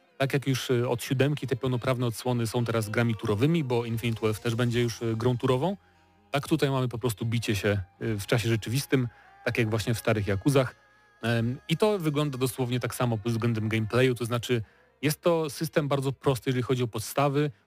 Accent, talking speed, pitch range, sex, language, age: native, 190 wpm, 115-135 Hz, male, Polish, 30-49